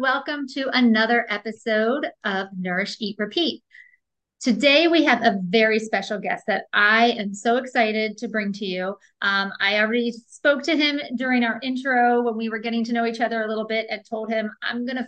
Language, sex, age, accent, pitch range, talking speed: English, female, 40-59, American, 210-255 Hz, 195 wpm